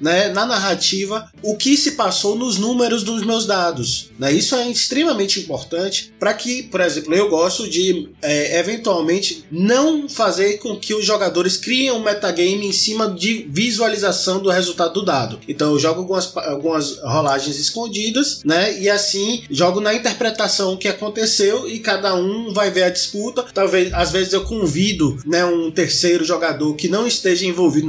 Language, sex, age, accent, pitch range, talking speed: Portuguese, male, 20-39, Brazilian, 170-220 Hz, 165 wpm